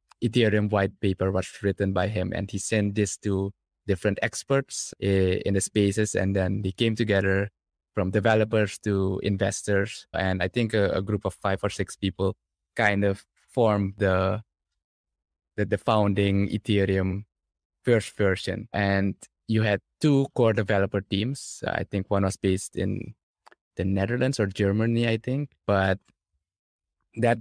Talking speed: 150 wpm